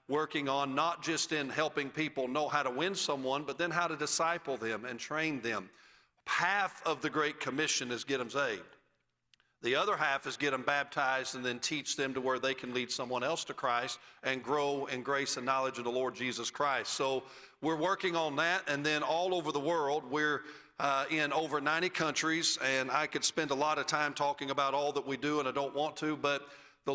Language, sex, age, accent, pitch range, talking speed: English, male, 40-59, American, 135-155 Hz, 220 wpm